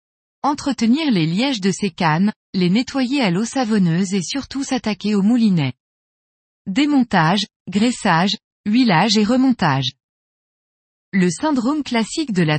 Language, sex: French, female